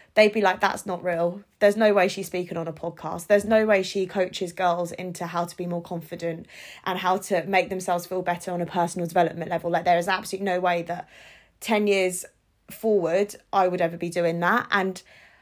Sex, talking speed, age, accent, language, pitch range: female, 215 wpm, 20-39, British, English, 180-210 Hz